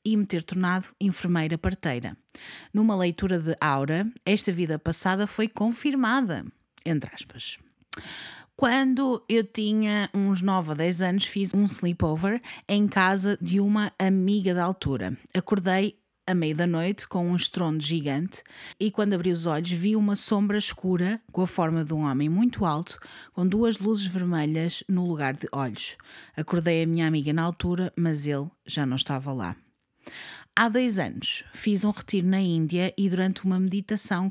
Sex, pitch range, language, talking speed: female, 165-205 Hz, Portuguese, 165 wpm